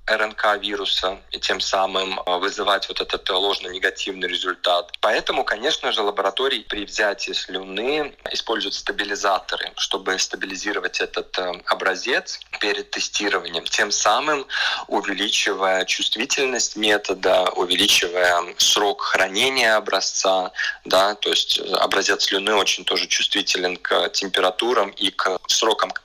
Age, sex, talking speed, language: 20-39, male, 110 wpm, Russian